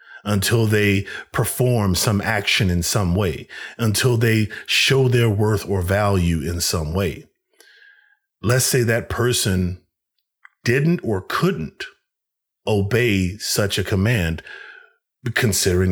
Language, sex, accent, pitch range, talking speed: English, male, American, 95-135 Hz, 115 wpm